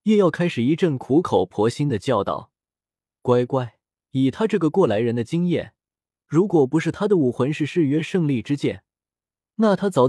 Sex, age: male, 20-39